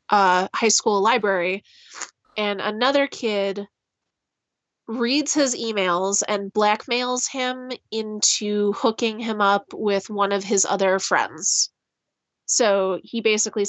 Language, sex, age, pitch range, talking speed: English, female, 20-39, 200-240 Hz, 115 wpm